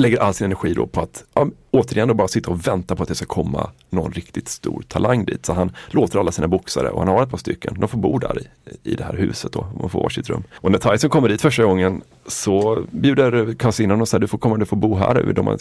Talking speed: 280 wpm